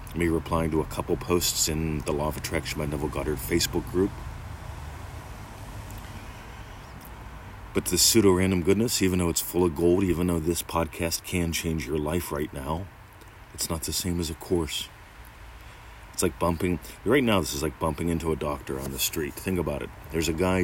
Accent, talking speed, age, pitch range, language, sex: American, 185 wpm, 30-49, 75-95 Hz, English, male